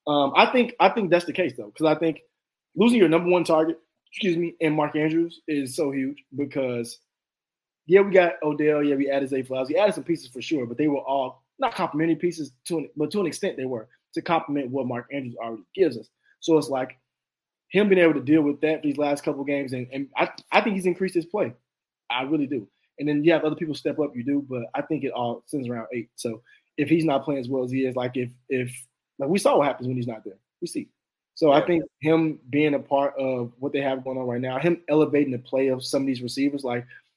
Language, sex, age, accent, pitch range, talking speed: English, male, 20-39, American, 130-160 Hz, 255 wpm